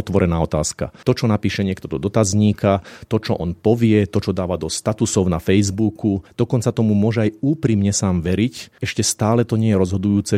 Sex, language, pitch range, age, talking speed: male, Slovak, 95-110 Hz, 40-59, 185 wpm